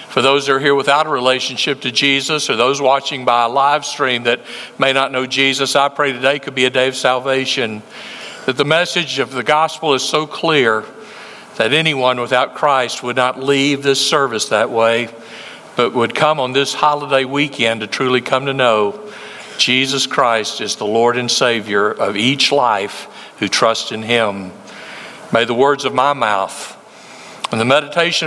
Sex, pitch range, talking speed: male, 130-170 Hz, 185 wpm